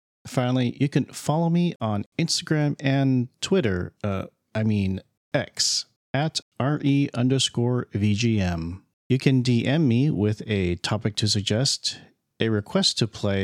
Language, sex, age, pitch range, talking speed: English, male, 40-59, 105-135 Hz, 135 wpm